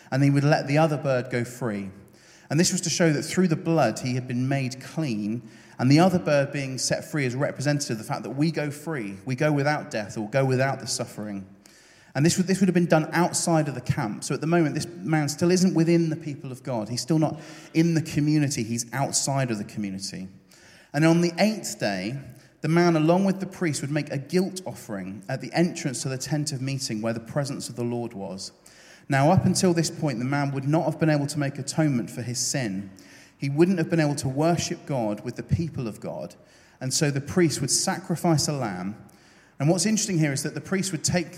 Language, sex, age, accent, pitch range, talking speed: English, male, 30-49, British, 125-165 Hz, 235 wpm